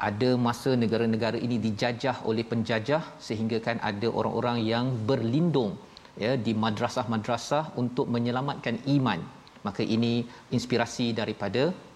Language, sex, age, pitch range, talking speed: Malayalam, male, 40-59, 120-150 Hz, 115 wpm